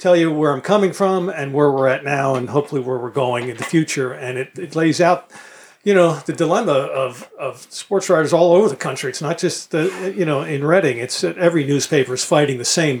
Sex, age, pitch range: male, 50-69, 130-165 Hz